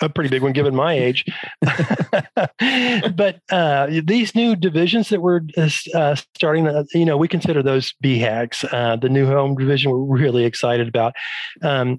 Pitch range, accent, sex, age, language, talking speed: 125-160 Hz, American, male, 40-59, English, 165 wpm